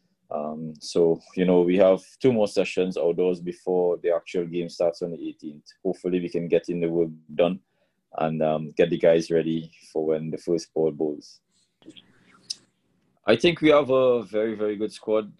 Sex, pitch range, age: male, 80-90 Hz, 20-39